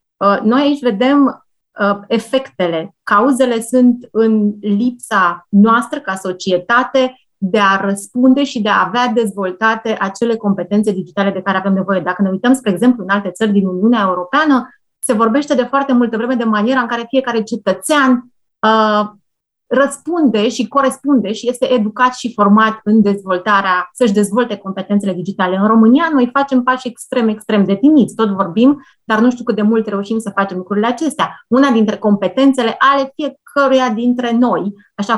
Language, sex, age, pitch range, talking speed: Romanian, female, 30-49, 200-255 Hz, 160 wpm